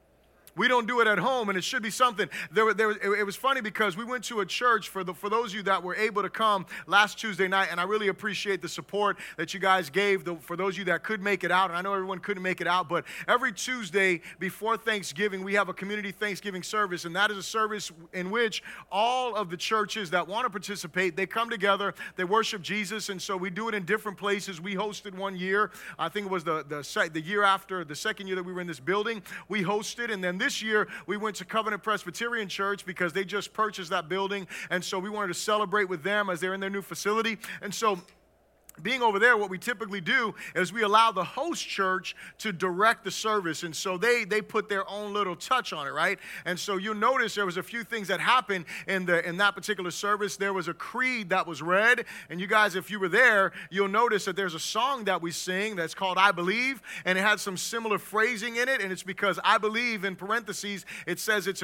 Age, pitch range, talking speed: 30-49, 185-215 Hz, 245 wpm